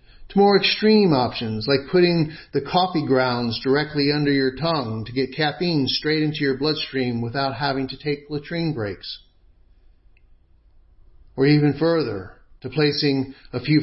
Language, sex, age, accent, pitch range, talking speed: English, male, 50-69, American, 100-145 Hz, 140 wpm